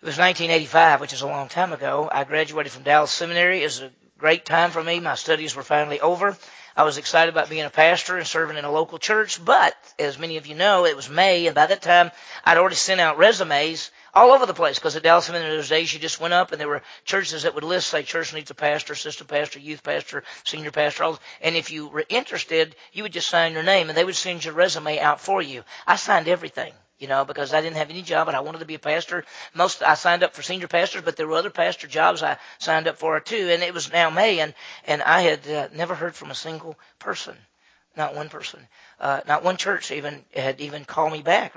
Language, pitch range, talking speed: English, 150-175 Hz, 250 wpm